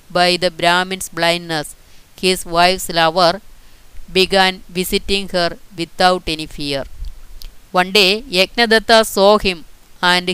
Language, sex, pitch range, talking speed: Malayalam, female, 160-195 Hz, 110 wpm